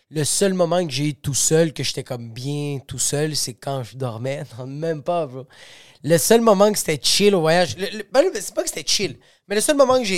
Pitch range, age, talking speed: 140-175 Hz, 30-49, 255 wpm